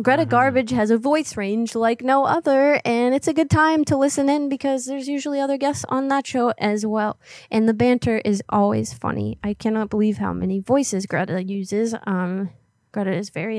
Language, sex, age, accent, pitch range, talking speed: English, female, 20-39, American, 195-235 Hz, 200 wpm